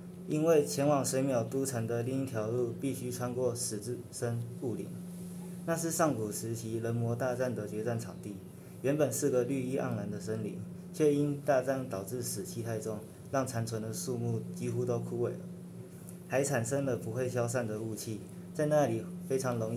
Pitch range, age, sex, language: 115-155 Hz, 20-39, male, Chinese